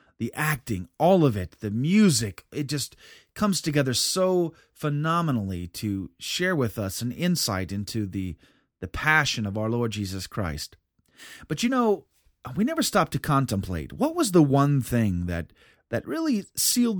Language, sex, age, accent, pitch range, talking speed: English, male, 30-49, American, 110-160 Hz, 160 wpm